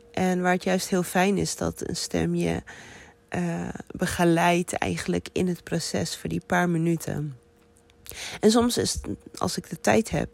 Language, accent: Dutch, Dutch